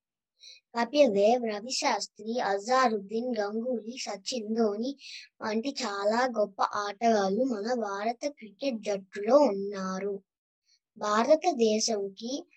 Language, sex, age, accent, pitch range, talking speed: Telugu, male, 20-39, native, 210-265 Hz, 75 wpm